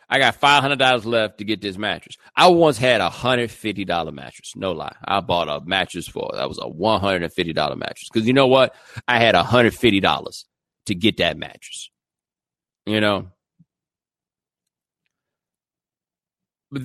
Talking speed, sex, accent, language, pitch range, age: 145 wpm, male, American, English, 105-130 Hz, 40-59